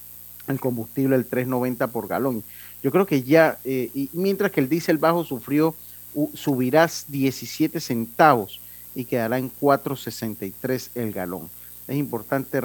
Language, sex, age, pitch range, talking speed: Spanish, male, 40-59, 105-155 Hz, 140 wpm